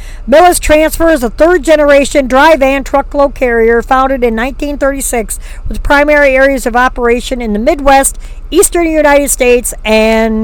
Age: 50-69